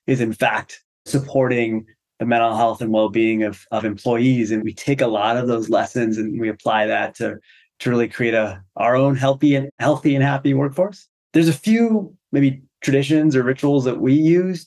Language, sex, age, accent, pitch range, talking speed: English, male, 30-49, American, 115-145 Hz, 190 wpm